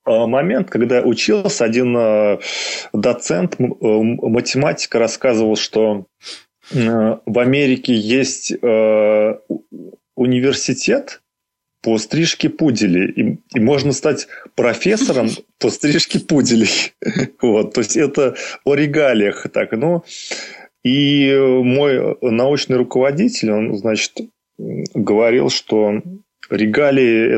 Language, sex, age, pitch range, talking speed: Russian, male, 20-39, 110-145 Hz, 90 wpm